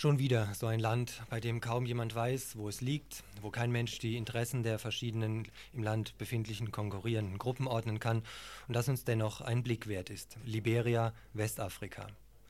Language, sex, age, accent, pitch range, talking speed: German, male, 40-59, German, 110-125 Hz, 180 wpm